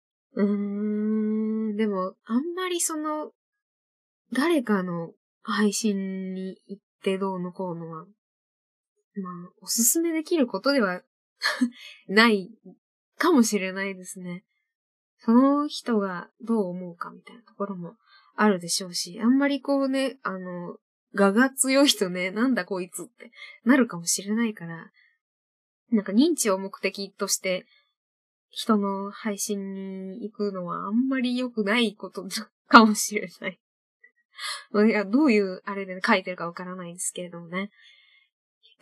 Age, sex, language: 20-39, female, Japanese